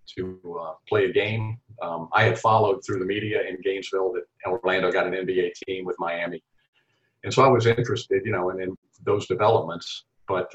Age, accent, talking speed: 50-69, American, 195 wpm